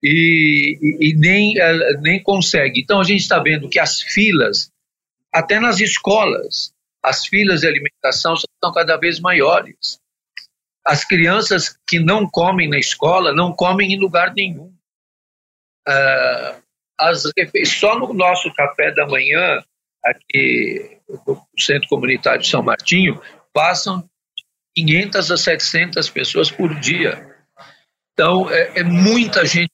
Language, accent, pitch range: Portuguese, Brazilian, 160-195 Hz